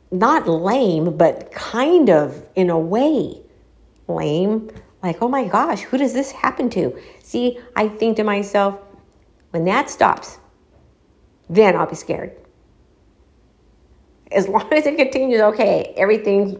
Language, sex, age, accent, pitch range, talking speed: English, female, 50-69, American, 160-210 Hz, 135 wpm